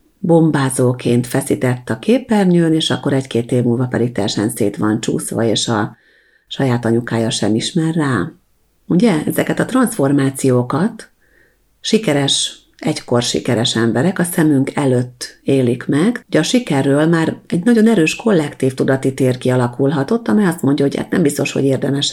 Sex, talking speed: female, 145 wpm